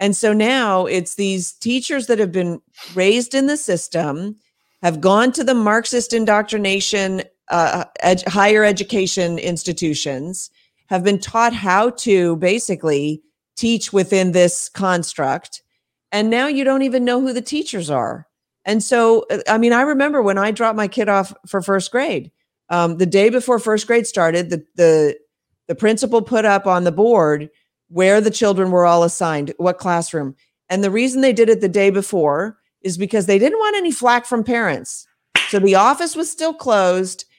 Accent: American